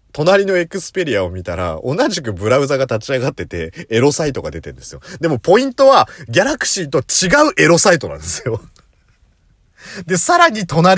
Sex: male